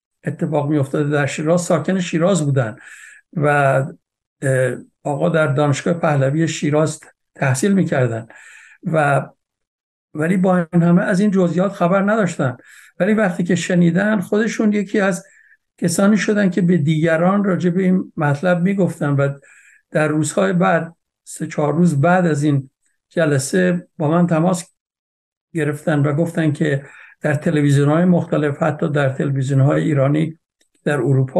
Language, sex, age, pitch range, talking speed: Persian, male, 60-79, 145-180 Hz, 130 wpm